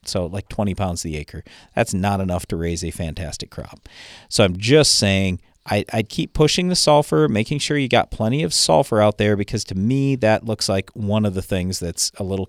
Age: 40-59